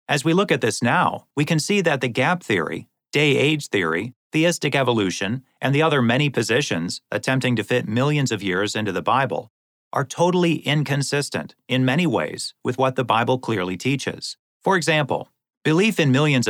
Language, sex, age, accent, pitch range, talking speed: English, male, 40-59, American, 115-150 Hz, 175 wpm